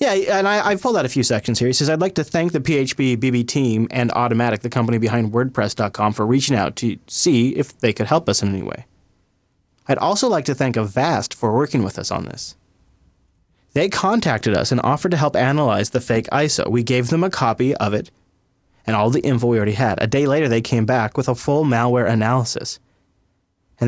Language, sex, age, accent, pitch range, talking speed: English, male, 30-49, American, 105-145 Hz, 220 wpm